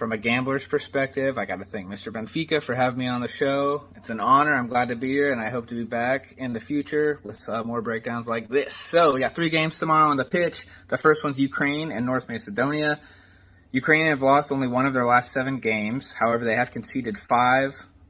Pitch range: 110-140 Hz